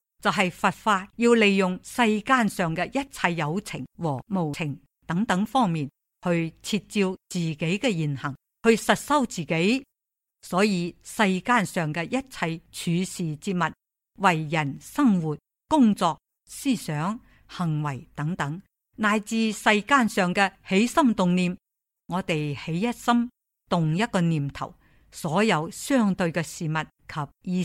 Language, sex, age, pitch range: Chinese, female, 50-69, 165-220 Hz